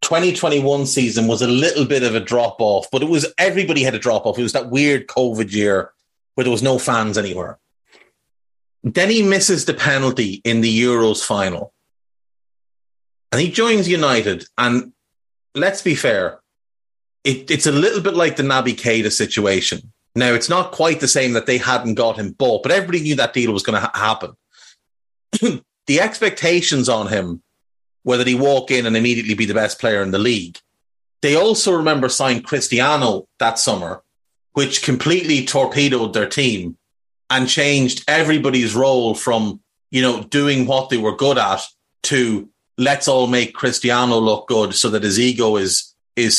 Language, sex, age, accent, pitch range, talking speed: English, male, 30-49, Irish, 110-145 Hz, 170 wpm